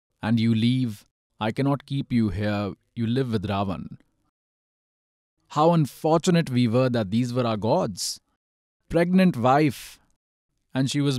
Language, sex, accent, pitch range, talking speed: English, male, Indian, 110-150 Hz, 140 wpm